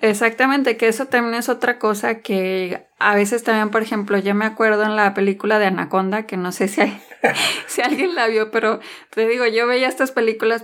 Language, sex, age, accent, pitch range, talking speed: Spanish, female, 20-39, Mexican, 200-235 Hz, 205 wpm